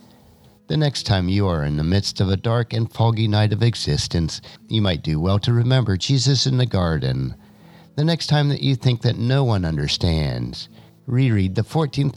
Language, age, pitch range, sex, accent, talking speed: English, 50-69, 85-130 Hz, male, American, 190 wpm